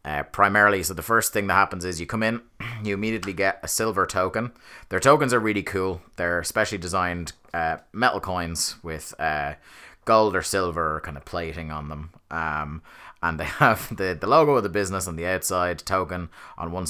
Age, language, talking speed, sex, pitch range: 30-49, English, 195 wpm, male, 80-95 Hz